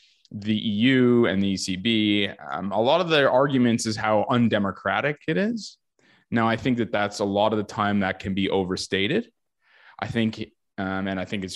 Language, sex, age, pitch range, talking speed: English, male, 20-39, 95-120 Hz, 190 wpm